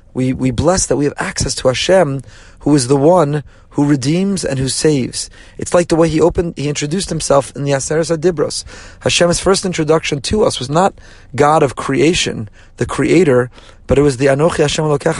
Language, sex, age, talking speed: English, male, 30-49, 195 wpm